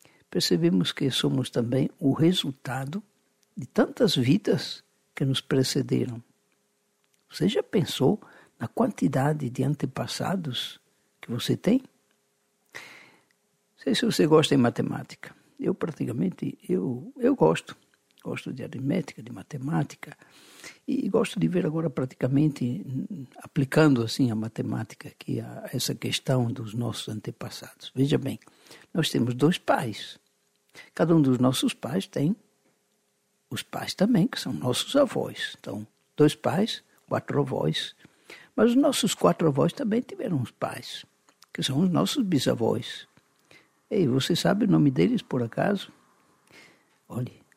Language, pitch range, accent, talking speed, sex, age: Portuguese, 130-205 Hz, Brazilian, 130 wpm, male, 60-79